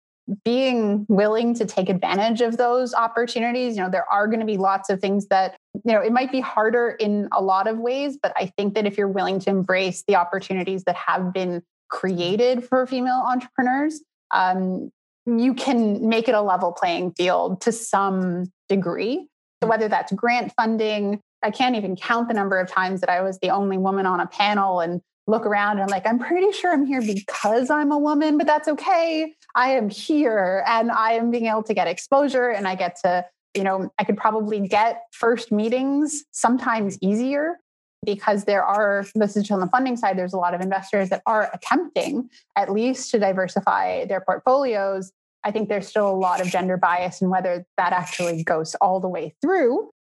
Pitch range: 190-245 Hz